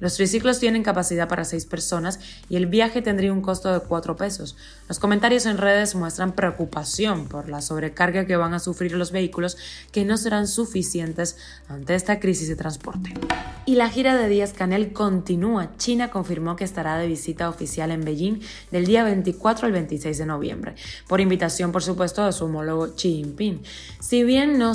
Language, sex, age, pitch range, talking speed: Spanish, female, 20-39, 165-200 Hz, 180 wpm